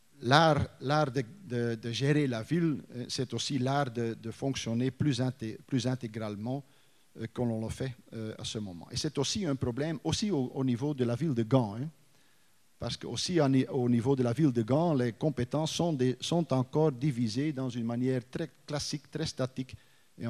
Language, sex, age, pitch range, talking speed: French, male, 50-69, 120-150 Hz, 190 wpm